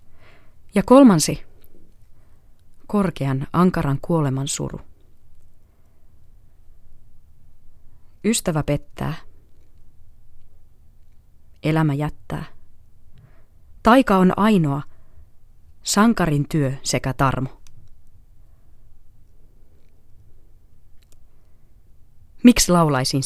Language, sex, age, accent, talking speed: Finnish, female, 30-49, native, 50 wpm